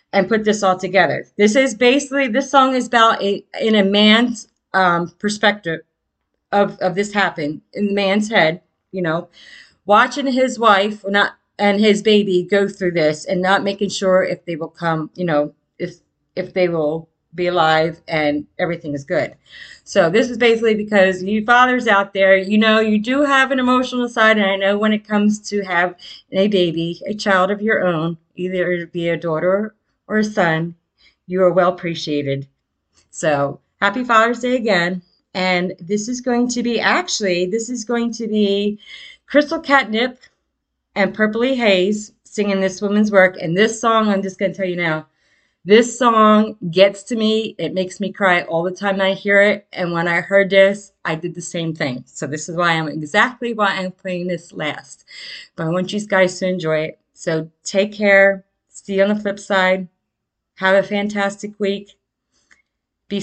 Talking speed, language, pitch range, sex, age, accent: 185 wpm, English, 175-215 Hz, female, 30-49, American